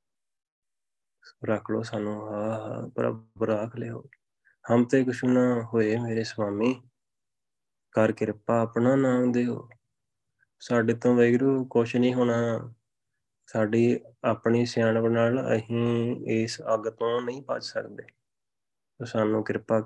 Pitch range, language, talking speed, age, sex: 110-120 Hz, Punjabi, 105 wpm, 20-39, male